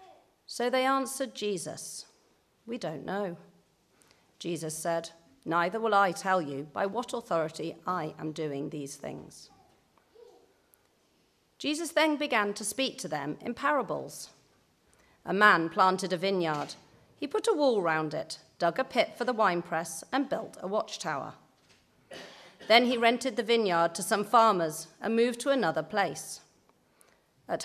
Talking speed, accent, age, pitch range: 145 wpm, British, 40-59, 165-230 Hz